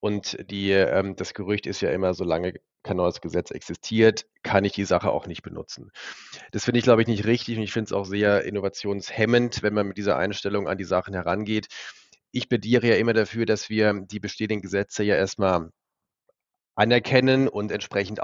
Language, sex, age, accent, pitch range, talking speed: German, male, 40-59, German, 100-120 Hz, 190 wpm